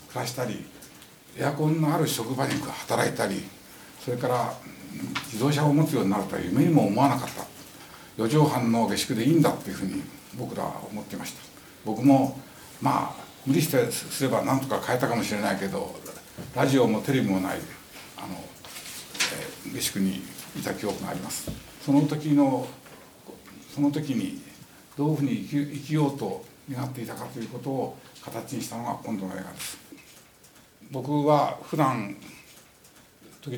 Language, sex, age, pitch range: Japanese, male, 60-79, 115-145 Hz